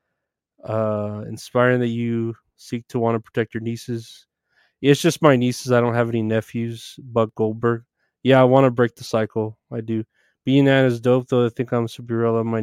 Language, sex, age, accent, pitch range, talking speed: English, male, 20-39, American, 115-135 Hz, 195 wpm